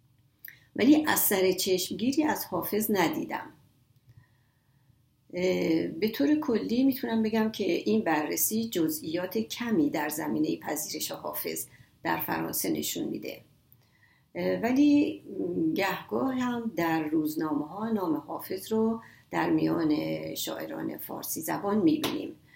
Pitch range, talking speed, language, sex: 150-235 Hz, 105 wpm, Persian, female